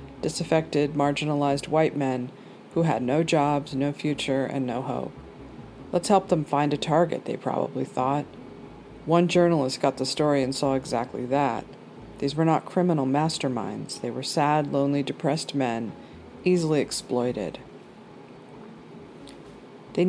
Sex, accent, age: female, American, 40-59